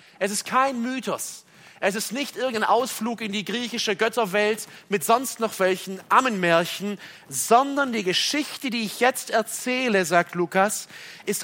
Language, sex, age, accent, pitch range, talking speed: German, male, 40-59, German, 165-220 Hz, 145 wpm